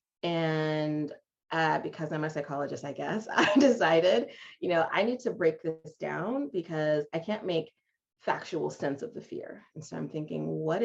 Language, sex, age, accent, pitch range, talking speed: English, female, 30-49, American, 155-195 Hz, 175 wpm